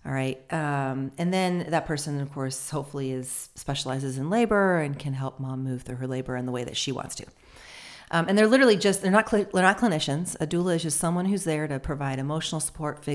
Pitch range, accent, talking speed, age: 135-165 Hz, American, 235 wpm, 40-59